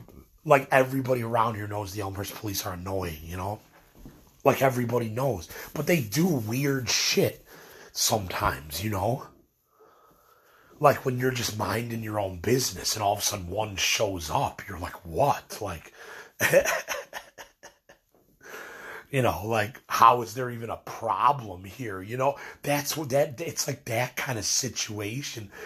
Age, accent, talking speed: 30-49, American, 150 wpm